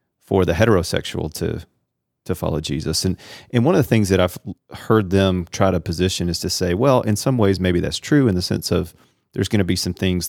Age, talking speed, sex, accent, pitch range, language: 40-59, 235 wpm, male, American, 85-100 Hz, English